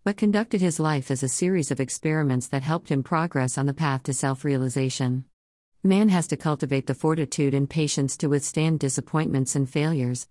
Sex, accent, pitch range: female, American, 130-155 Hz